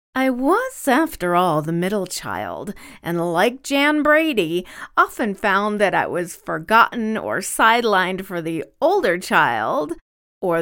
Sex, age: female, 40-59